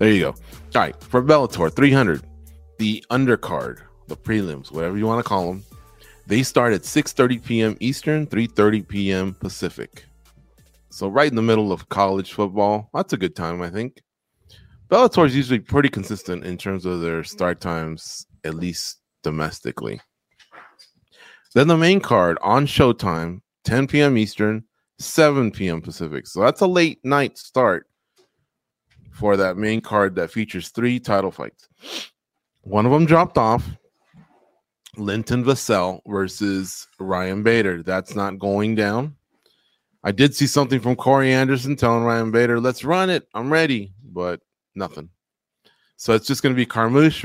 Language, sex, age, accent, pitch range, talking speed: English, male, 30-49, American, 95-130 Hz, 150 wpm